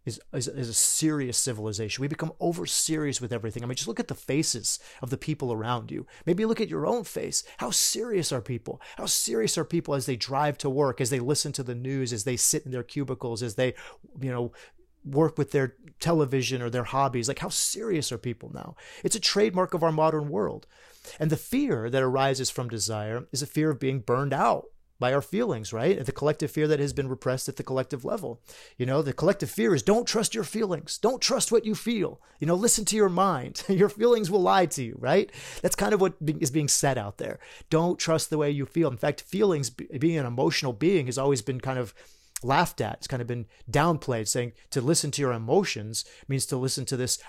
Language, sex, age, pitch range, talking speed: English, male, 30-49, 125-160 Hz, 225 wpm